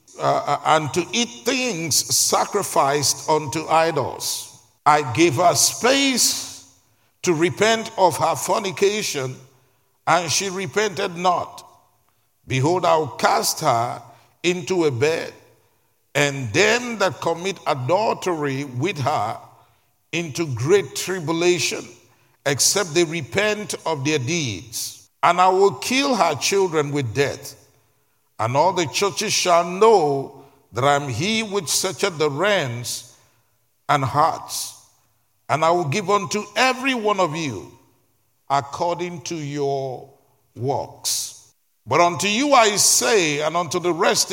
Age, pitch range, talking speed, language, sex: 50-69, 135-190 Hz, 125 wpm, English, male